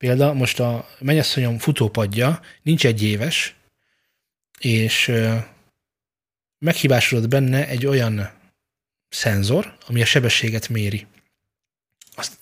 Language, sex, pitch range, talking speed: Hungarian, male, 110-145 Hz, 90 wpm